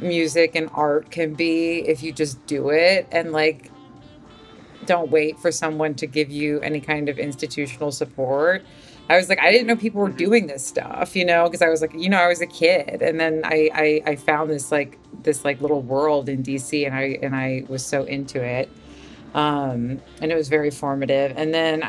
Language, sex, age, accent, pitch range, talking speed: English, female, 30-49, American, 140-160 Hz, 210 wpm